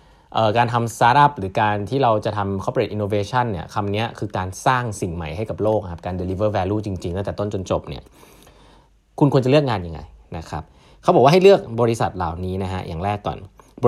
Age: 20-39